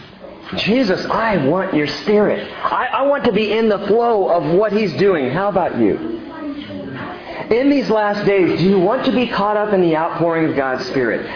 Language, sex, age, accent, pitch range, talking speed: English, male, 50-69, American, 165-235 Hz, 195 wpm